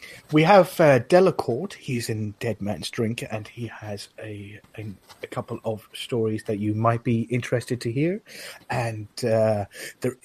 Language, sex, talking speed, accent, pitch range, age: English, male, 165 wpm, British, 110-155 Hz, 30-49